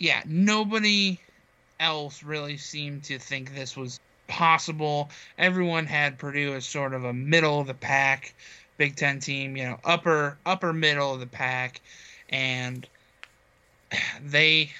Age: 20-39